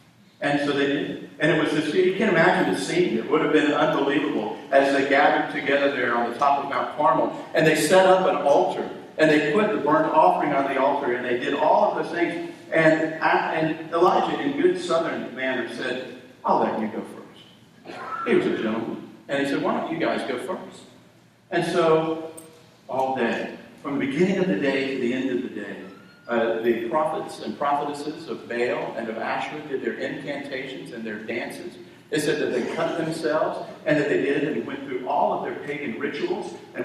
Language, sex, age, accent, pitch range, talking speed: English, male, 50-69, American, 130-160 Hz, 210 wpm